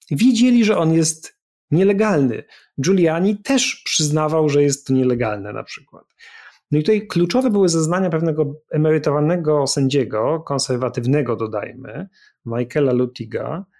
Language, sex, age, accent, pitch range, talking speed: Polish, male, 30-49, native, 115-155 Hz, 115 wpm